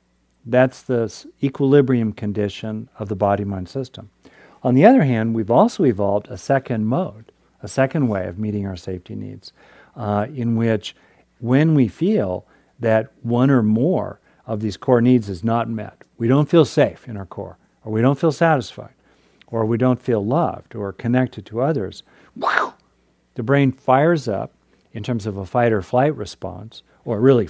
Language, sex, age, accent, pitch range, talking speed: English, male, 50-69, American, 105-130 Hz, 165 wpm